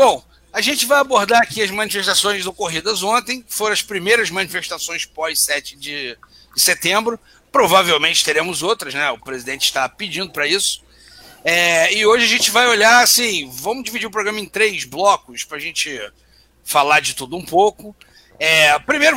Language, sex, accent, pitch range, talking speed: Portuguese, male, Brazilian, 180-245 Hz, 170 wpm